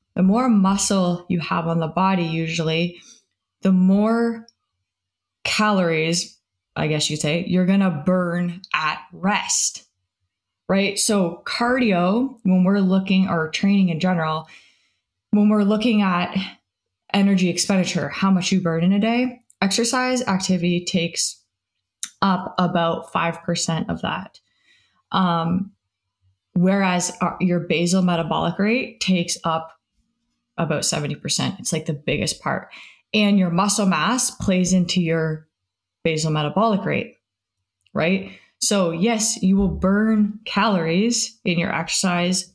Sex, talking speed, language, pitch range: female, 125 wpm, English, 165-200 Hz